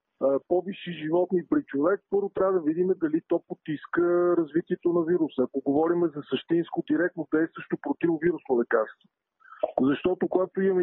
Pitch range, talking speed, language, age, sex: 145-180 Hz, 140 wpm, Bulgarian, 40-59, male